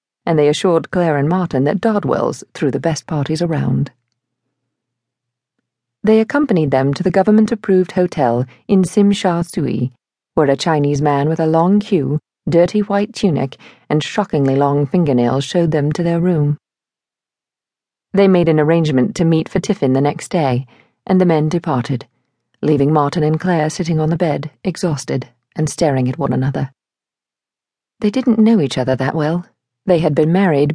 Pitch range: 135-180 Hz